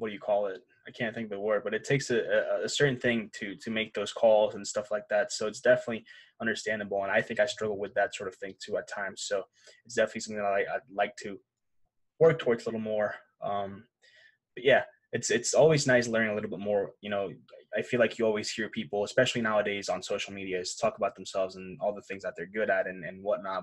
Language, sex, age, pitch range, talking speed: English, male, 20-39, 100-120 Hz, 250 wpm